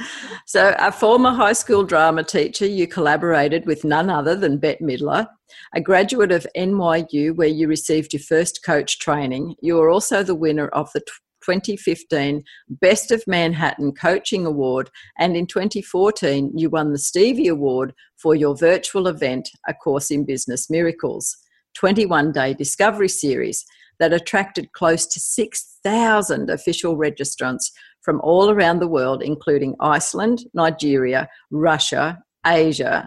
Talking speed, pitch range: 140 wpm, 140-180 Hz